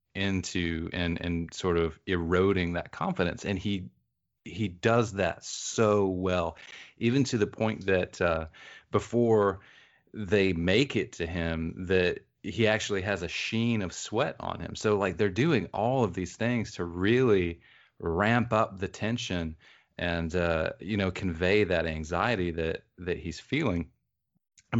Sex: male